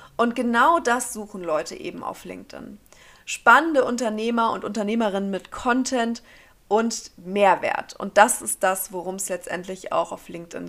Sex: female